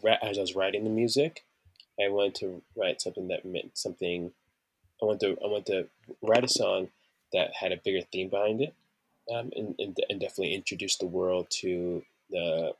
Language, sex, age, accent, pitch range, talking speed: English, male, 20-39, American, 90-110 Hz, 190 wpm